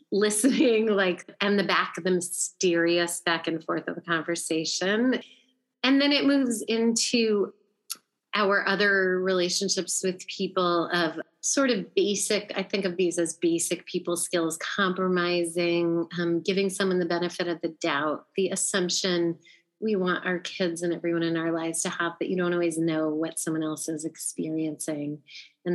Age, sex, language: 30-49, female, English